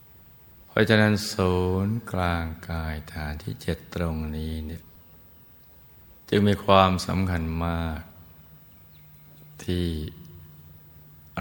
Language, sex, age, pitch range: Thai, male, 60-79, 80-90 Hz